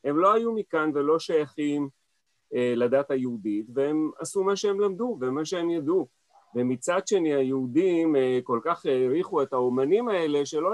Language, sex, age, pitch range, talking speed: Hebrew, male, 40-59, 130-165 Hz, 155 wpm